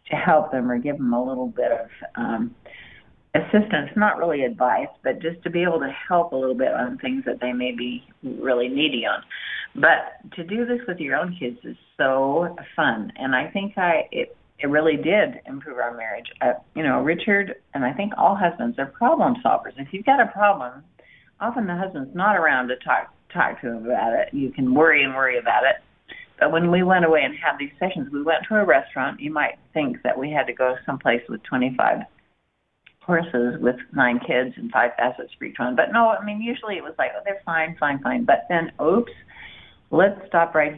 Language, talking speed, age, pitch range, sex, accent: English, 215 wpm, 50-69, 135-215 Hz, female, American